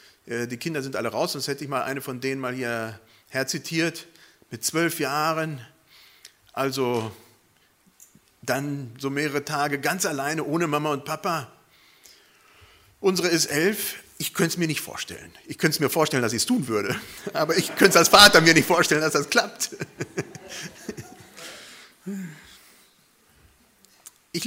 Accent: German